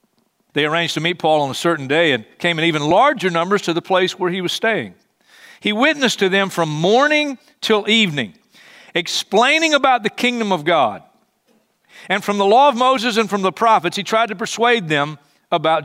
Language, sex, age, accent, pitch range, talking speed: English, male, 50-69, American, 165-215 Hz, 195 wpm